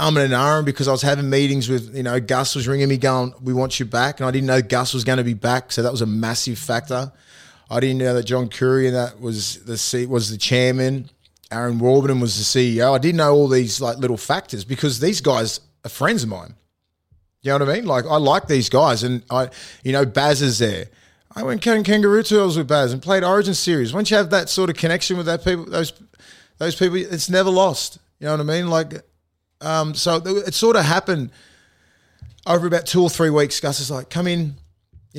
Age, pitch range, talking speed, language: 20-39, 120-160 Hz, 235 wpm, English